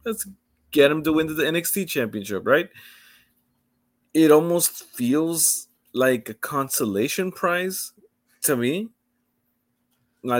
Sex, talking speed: male, 110 wpm